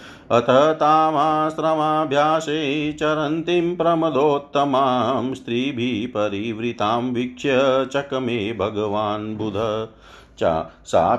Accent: native